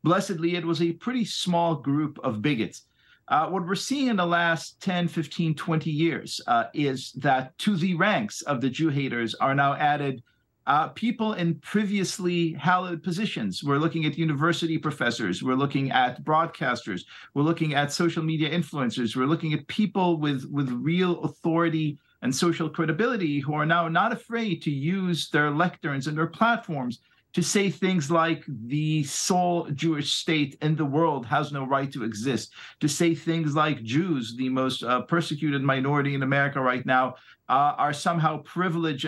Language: English